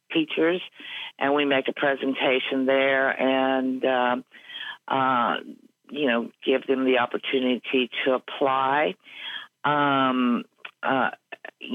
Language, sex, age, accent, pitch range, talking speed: English, female, 50-69, American, 130-145 Hz, 100 wpm